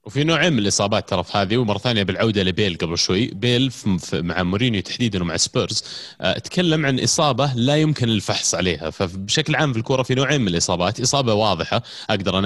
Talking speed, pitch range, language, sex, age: 180 wpm, 100-145 Hz, Arabic, male, 30-49